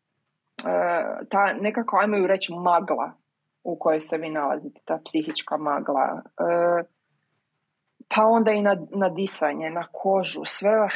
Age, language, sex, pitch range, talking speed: 20-39, Croatian, female, 170-215 Hz, 130 wpm